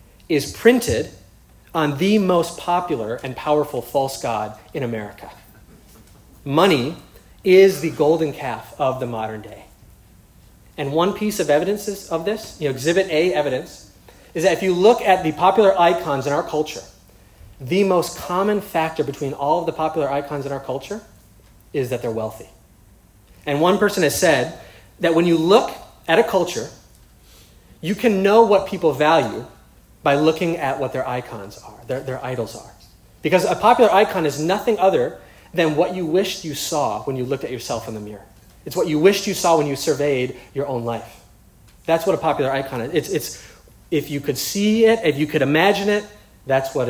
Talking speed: 185 wpm